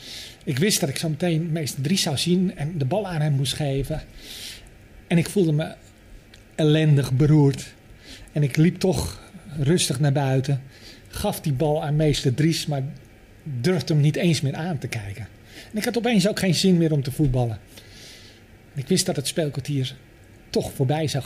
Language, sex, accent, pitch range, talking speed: Dutch, male, Dutch, 120-160 Hz, 180 wpm